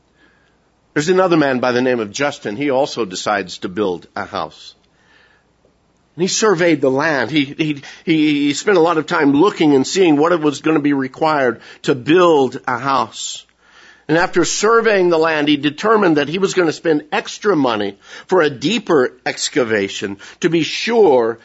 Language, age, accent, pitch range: English, 50-69, American, 135-180 Hz